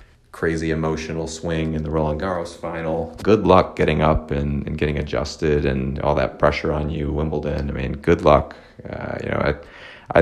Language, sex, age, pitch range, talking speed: English, male, 30-49, 75-85 Hz, 190 wpm